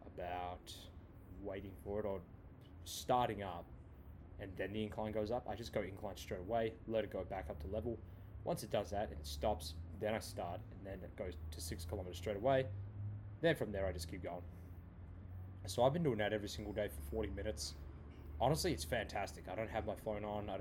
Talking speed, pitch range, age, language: 215 wpm, 90-105 Hz, 10-29, English